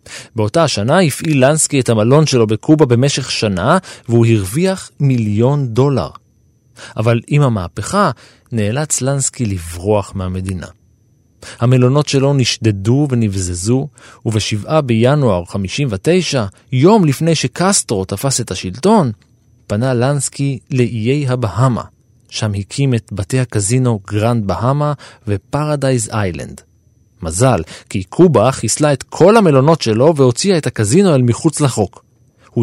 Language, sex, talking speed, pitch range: Hebrew, male, 115 wpm, 110-150 Hz